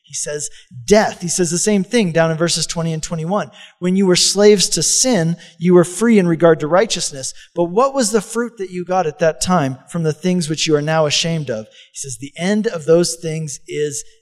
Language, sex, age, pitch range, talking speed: English, male, 40-59, 160-210 Hz, 230 wpm